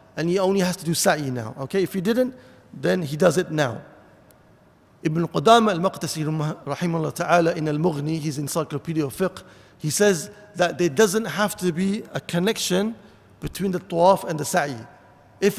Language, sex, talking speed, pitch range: English, male, 175 wpm, 155-195 Hz